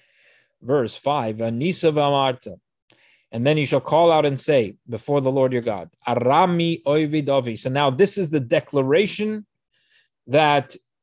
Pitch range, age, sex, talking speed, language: 125-150 Hz, 30-49, male, 135 wpm, English